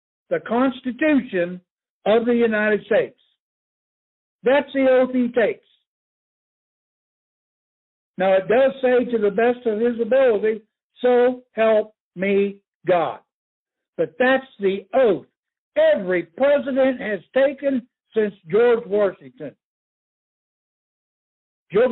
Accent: American